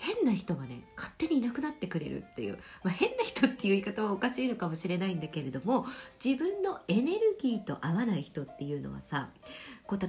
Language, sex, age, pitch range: Japanese, female, 50-69, 175-280 Hz